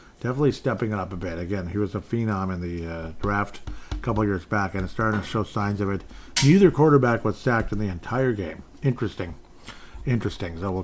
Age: 40-59